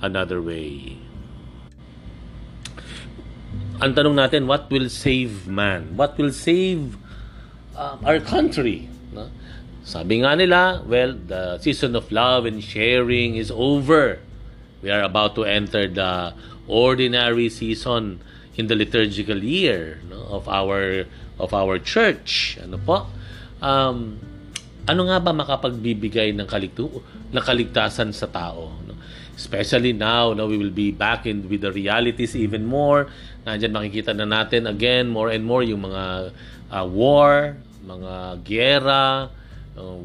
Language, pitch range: Filipino, 100-125 Hz